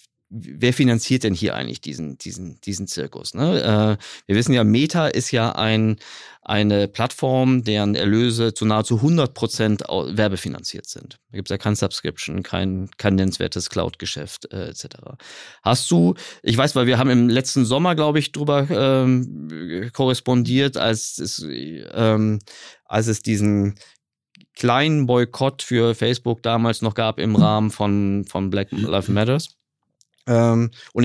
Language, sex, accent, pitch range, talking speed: German, male, German, 105-130 Hz, 130 wpm